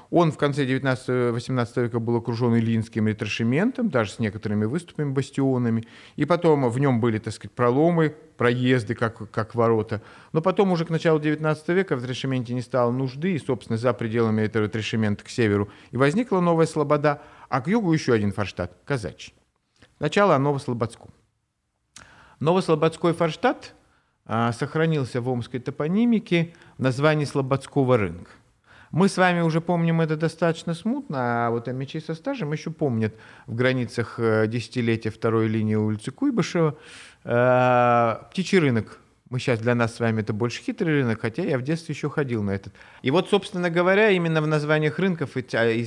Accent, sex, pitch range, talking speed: native, male, 115-160 Hz, 160 wpm